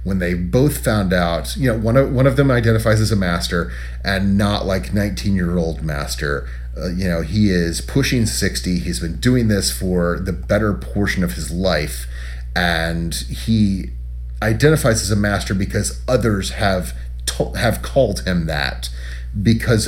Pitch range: 65-100 Hz